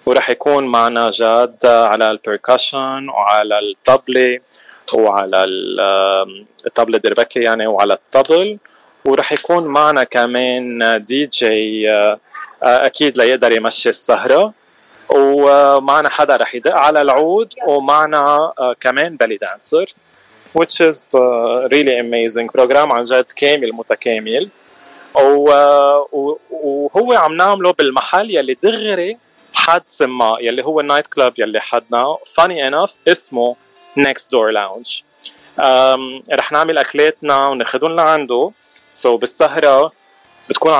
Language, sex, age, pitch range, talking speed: Arabic, male, 20-39, 120-150 Hz, 105 wpm